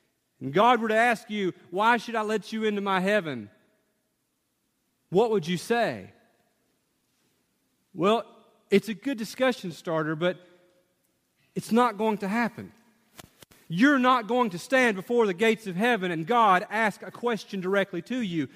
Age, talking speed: 40-59, 155 wpm